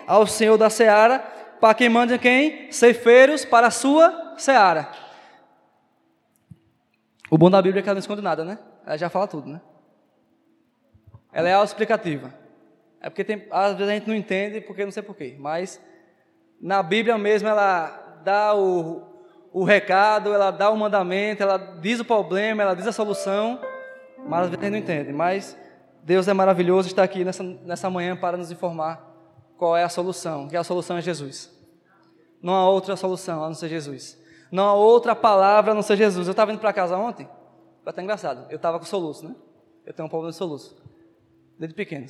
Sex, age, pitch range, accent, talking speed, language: male, 20-39, 175-215 Hz, Brazilian, 190 wpm, Portuguese